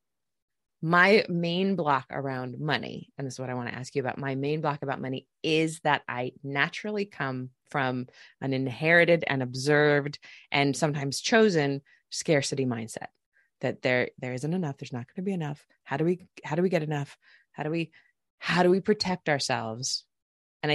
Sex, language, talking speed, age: female, English, 180 wpm, 20-39